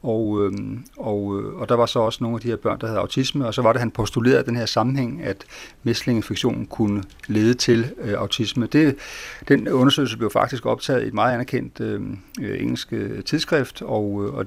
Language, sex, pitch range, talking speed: Danish, male, 105-125 Hz, 200 wpm